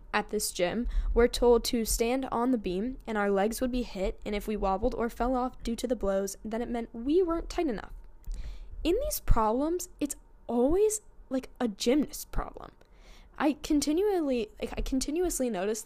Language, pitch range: English, 210-265 Hz